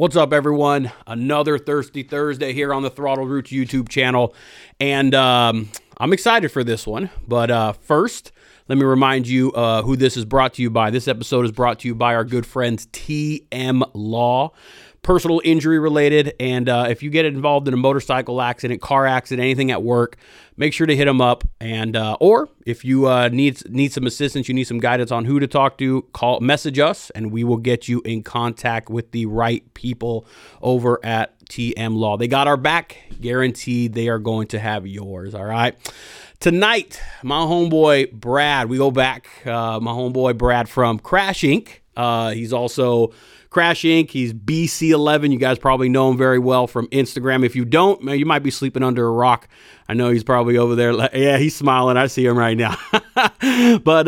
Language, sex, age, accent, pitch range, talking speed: English, male, 30-49, American, 120-145 Hz, 195 wpm